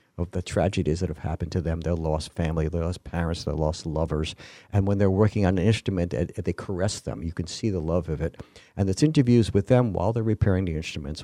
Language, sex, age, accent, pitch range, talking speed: English, male, 50-69, American, 85-110 Hz, 235 wpm